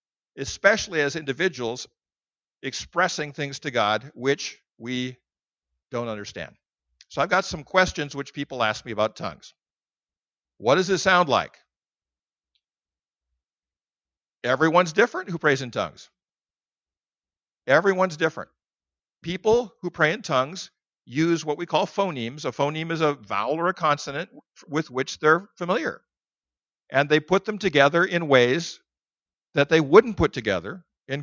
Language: English